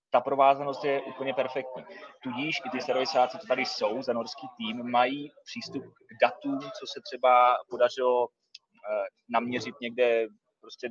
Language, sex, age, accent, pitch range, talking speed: Czech, male, 30-49, native, 125-160 Hz, 145 wpm